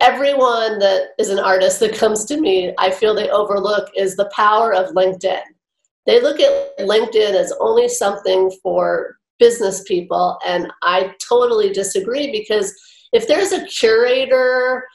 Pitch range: 200-285 Hz